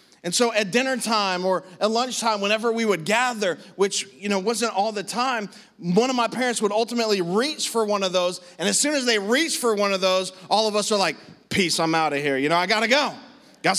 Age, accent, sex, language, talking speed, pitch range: 30-49, American, male, English, 245 wpm, 200-235 Hz